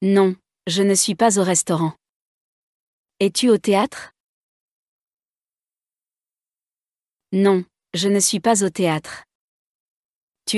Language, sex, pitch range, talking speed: German, female, 185-210 Hz, 100 wpm